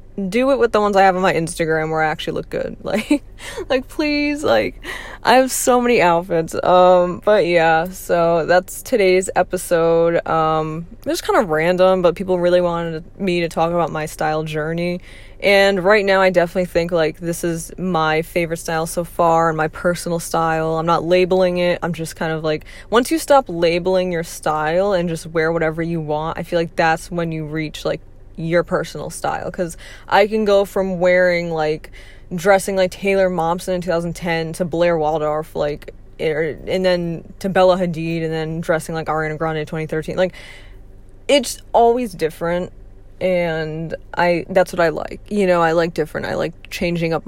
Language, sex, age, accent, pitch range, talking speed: English, female, 20-39, American, 160-185 Hz, 185 wpm